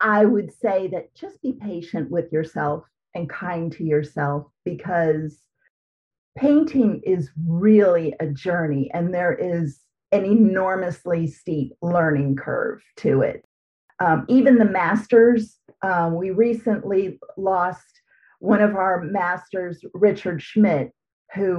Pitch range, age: 170-220 Hz, 40-59